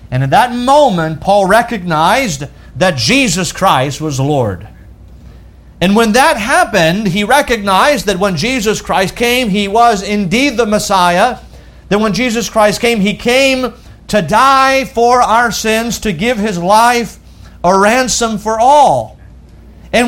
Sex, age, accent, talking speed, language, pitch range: male, 50-69, American, 145 wpm, English, 160-235 Hz